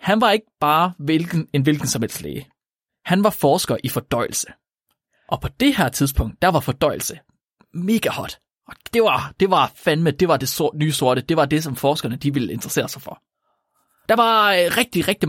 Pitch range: 130-185 Hz